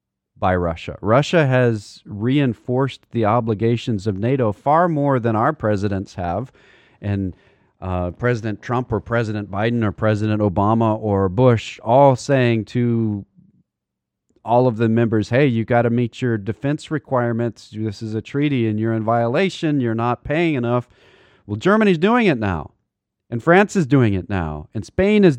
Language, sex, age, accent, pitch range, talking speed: English, male, 40-59, American, 100-125 Hz, 160 wpm